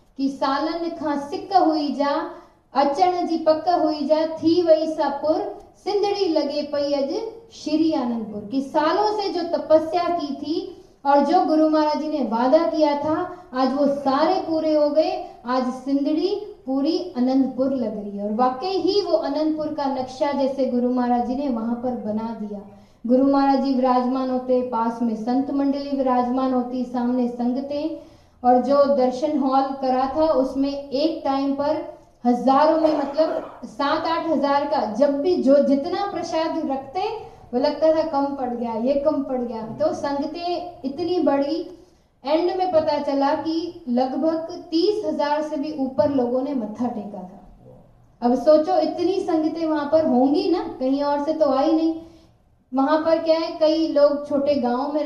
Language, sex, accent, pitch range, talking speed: Hindi, female, native, 260-320 Hz, 165 wpm